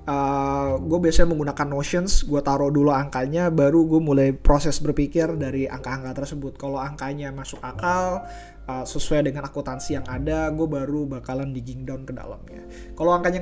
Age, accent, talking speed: 20-39, native, 160 wpm